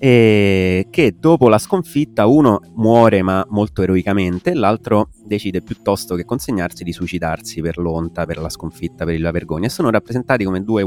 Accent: native